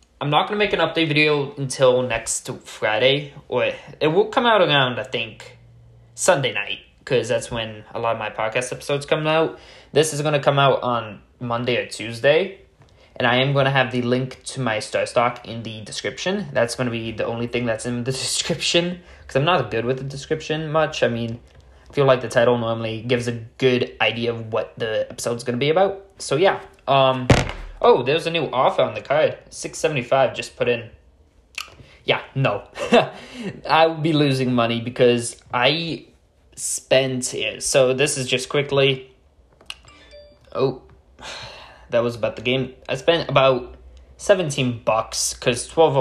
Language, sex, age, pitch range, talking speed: English, male, 20-39, 110-135 Hz, 185 wpm